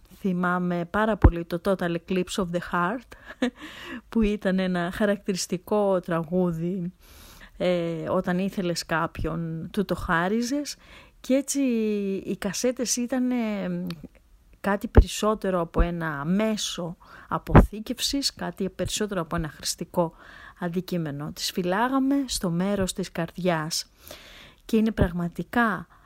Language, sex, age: Greek, female, 30-49